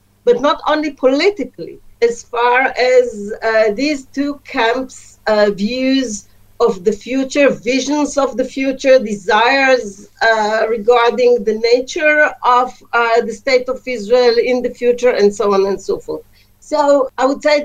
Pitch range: 215-275 Hz